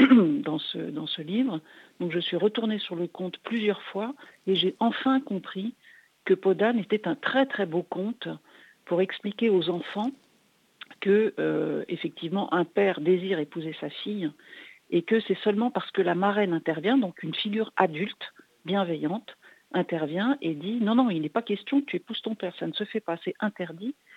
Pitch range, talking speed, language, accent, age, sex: 160-210 Hz, 185 wpm, French, French, 50-69, female